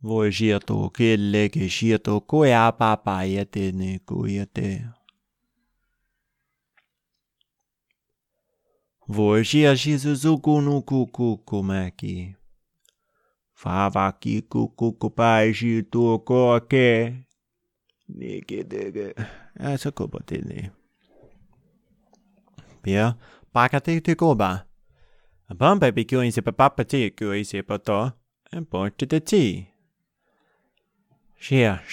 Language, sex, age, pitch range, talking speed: English, male, 30-49, 100-130 Hz, 65 wpm